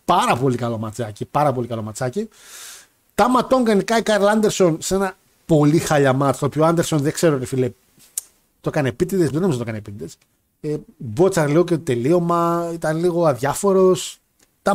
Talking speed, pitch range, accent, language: 175 wpm, 140-195 Hz, native, Greek